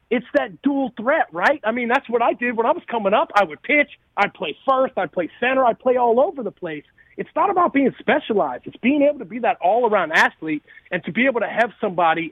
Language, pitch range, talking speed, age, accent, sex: English, 195-250 Hz, 250 wpm, 40-59, American, male